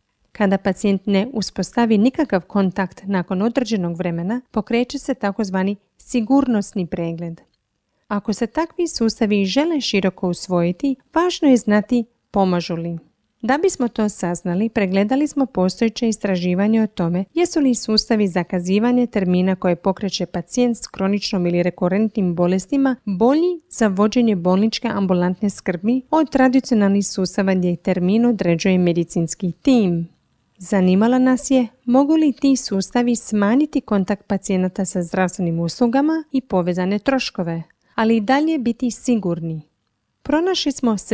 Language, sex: Croatian, female